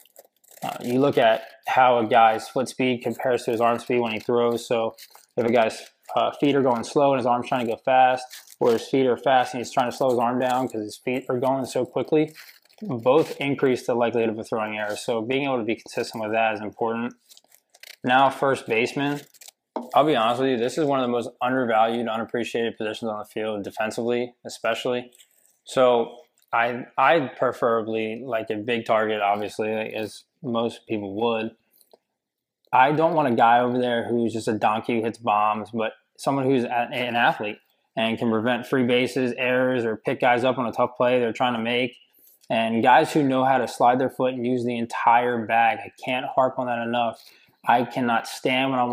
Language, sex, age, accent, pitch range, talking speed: English, male, 20-39, American, 115-130 Hz, 205 wpm